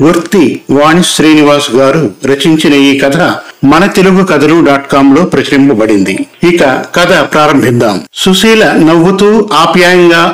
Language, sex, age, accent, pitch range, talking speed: Telugu, male, 50-69, native, 155-190 Hz, 60 wpm